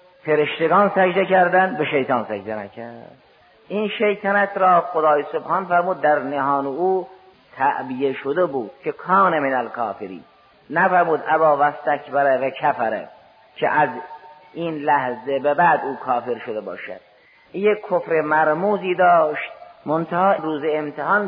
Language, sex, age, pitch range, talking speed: Persian, male, 50-69, 135-185 Hz, 125 wpm